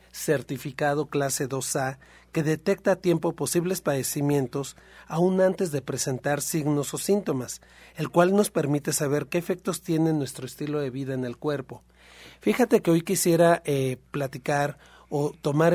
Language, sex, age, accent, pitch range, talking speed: Spanish, male, 40-59, Mexican, 140-175 Hz, 150 wpm